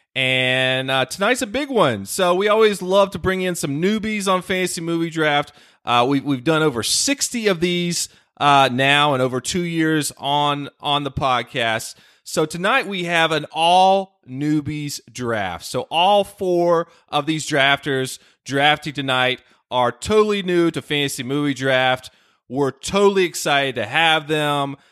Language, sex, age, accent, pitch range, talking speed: English, male, 30-49, American, 135-190 Hz, 160 wpm